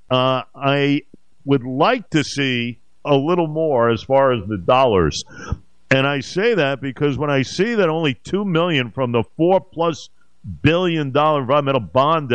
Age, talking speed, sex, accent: 50-69, 165 wpm, male, American